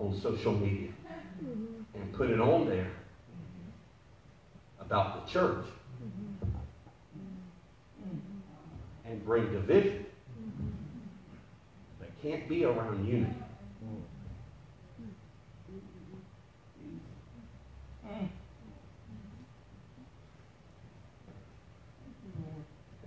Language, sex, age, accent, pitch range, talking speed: English, male, 50-69, American, 95-115 Hz, 50 wpm